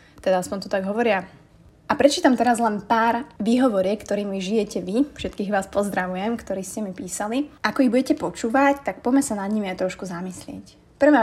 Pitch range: 195-240 Hz